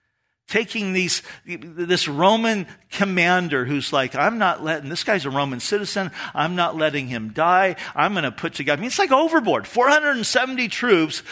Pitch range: 135-205 Hz